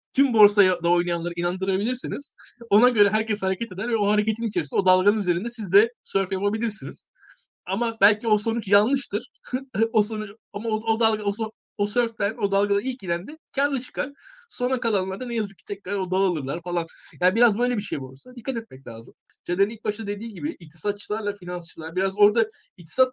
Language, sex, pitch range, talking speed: Turkish, male, 180-230 Hz, 175 wpm